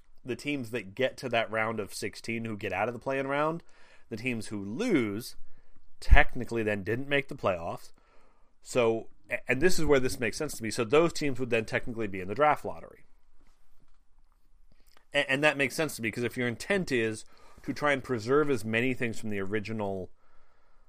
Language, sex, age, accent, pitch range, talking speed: English, male, 30-49, American, 105-135 Hz, 200 wpm